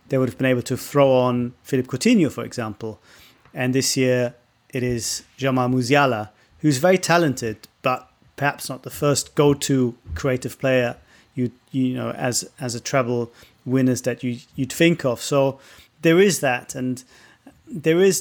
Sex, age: male, 30-49